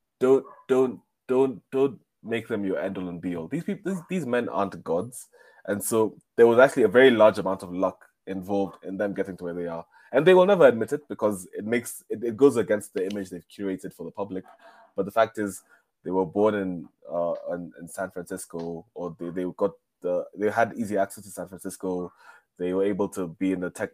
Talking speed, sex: 230 wpm, male